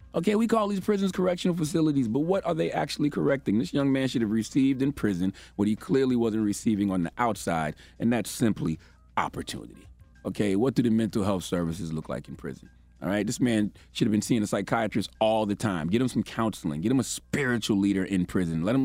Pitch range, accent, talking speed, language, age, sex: 95-150 Hz, American, 225 wpm, English, 30-49, male